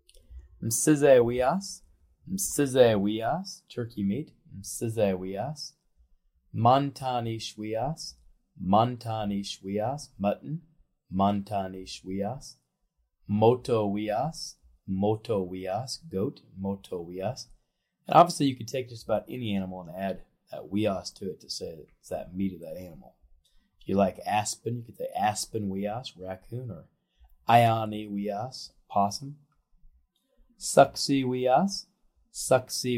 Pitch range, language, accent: 100-130 Hz, English, American